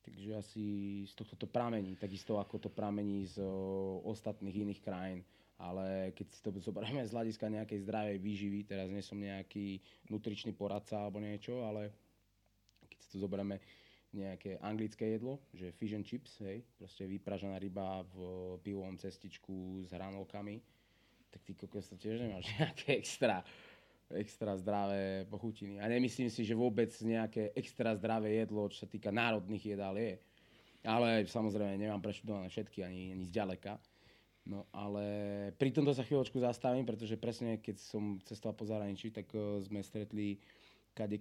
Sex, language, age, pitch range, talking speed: male, Slovak, 20-39, 100-110 Hz, 155 wpm